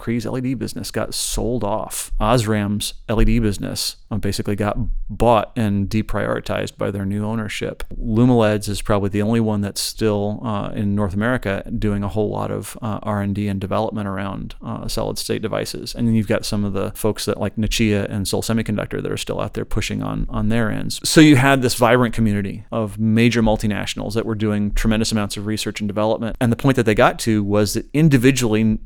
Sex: male